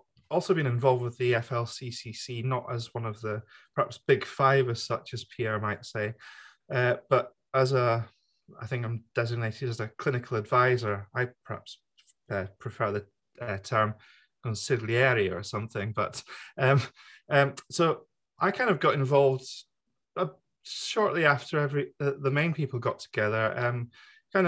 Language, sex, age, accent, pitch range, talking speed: English, male, 20-39, British, 115-150 Hz, 155 wpm